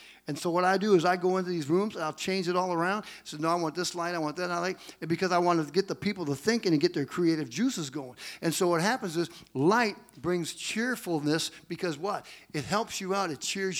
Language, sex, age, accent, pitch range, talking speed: English, male, 50-69, American, 160-185 Hz, 265 wpm